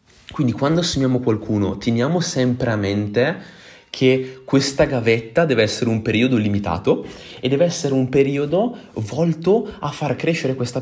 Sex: male